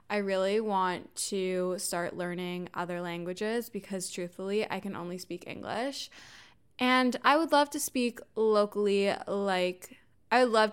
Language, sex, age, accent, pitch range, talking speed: English, female, 20-39, American, 185-215 Hz, 145 wpm